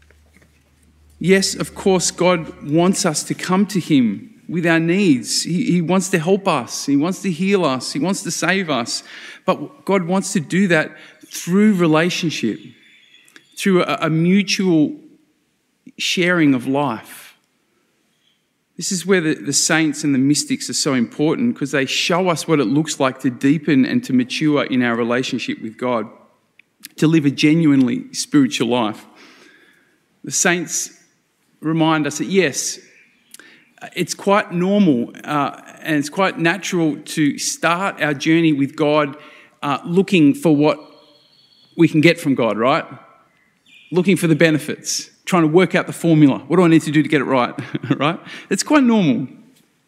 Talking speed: 160 wpm